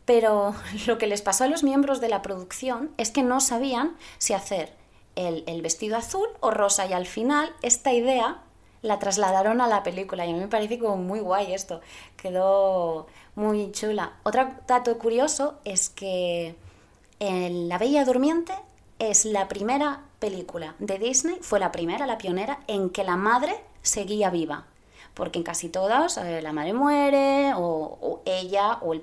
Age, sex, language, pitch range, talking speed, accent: 20-39, female, Spanish, 175-240 Hz, 170 wpm, Spanish